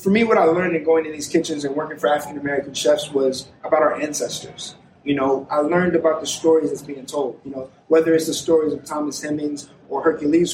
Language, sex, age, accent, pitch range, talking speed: English, male, 20-39, American, 145-160 Hz, 235 wpm